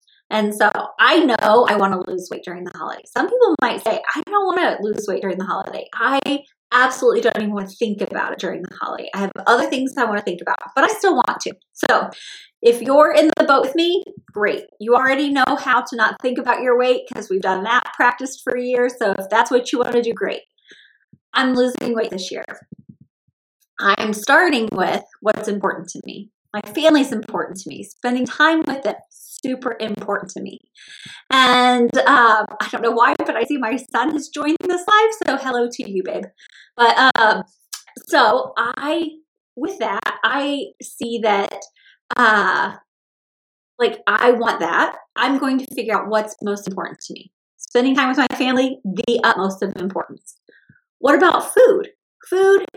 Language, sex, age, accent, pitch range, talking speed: English, female, 30-49, American, 210-280 Hz, 190 wpm